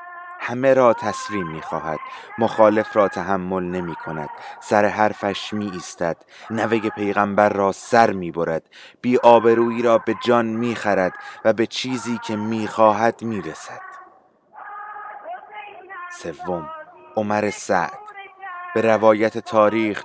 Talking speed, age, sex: 110 wpm, 30-49, male